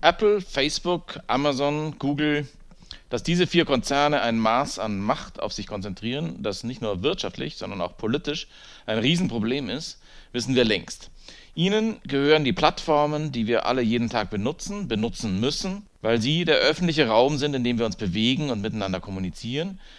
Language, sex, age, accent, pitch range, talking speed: German, male, 40-59, German, 110-155 Hz, 160 wpm